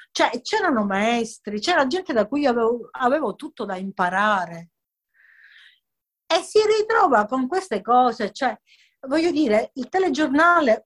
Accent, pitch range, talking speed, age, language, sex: native, 200-310 Hz, 125 wpm, 40-59, Italian, female